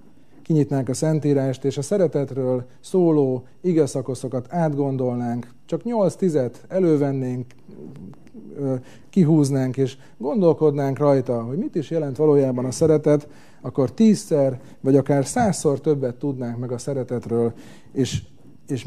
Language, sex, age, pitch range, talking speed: Hungarian, male, 30-49, 130-165 Hz, 110 wpm